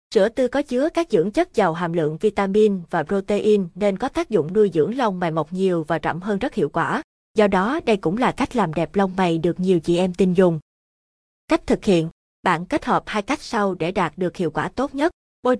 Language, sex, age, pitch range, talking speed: Vietnamese, female, 20-39, 175-225 Hz, 240 wpm